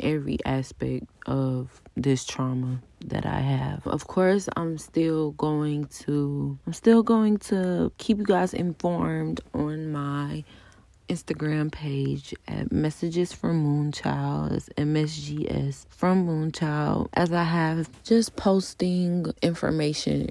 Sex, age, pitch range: female, 20-39, 125-160 Hz